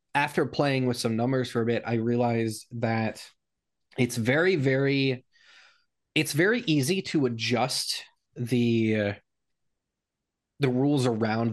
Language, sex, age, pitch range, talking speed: English, male, 20-39, 115-140 Hz, 125 wpm